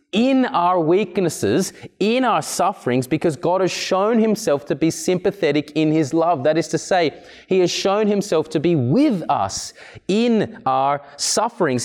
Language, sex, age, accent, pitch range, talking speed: English, male, 20-39, Australian, 150-195 Hz, 160 wpm